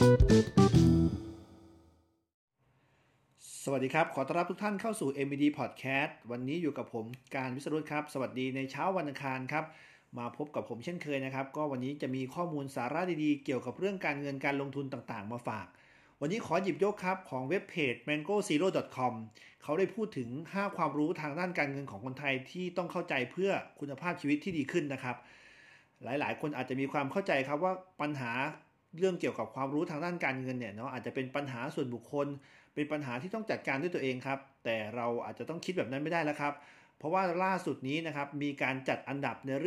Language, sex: Thai, male